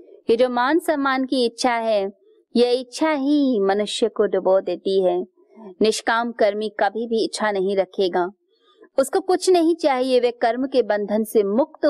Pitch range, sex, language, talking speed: 195-285 Hz, female, Hindi, 155 wpm